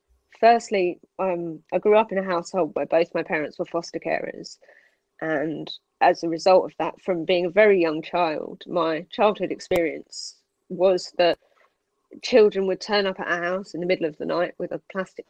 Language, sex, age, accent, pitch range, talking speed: English, female, 30-49, British, 170-210 Hz, 190 wpm